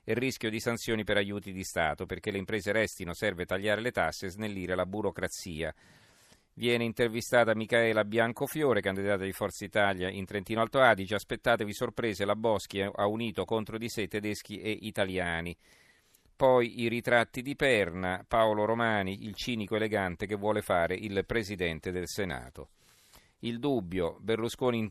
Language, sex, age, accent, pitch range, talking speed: Italian, male, 40-59, native, 95-115 Hz, 155 wpm